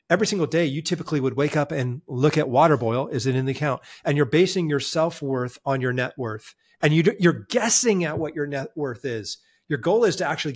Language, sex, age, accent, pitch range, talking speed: English, male, 40-59, American, 130-165 Hz, 235 wpm